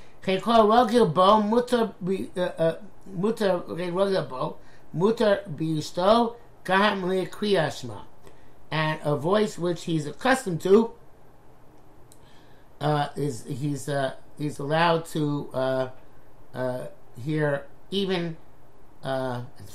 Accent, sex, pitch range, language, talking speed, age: American, male, 130-175 Hz, English, 60 wpm, 50-69